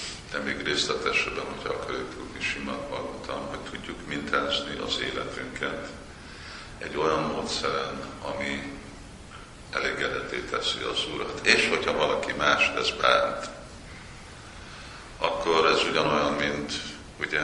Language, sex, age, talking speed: Hungarian, male, 50-69, 110 wpm